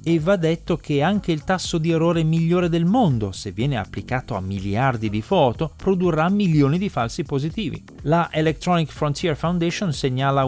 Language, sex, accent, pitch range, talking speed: Italian, male, native, 115-165 Hz, 165 wpm